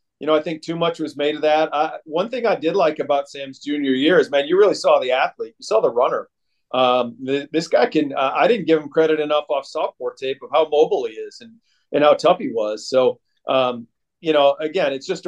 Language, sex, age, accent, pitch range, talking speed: English, male, 40-59, American, 150-190 Hz, 250 wpm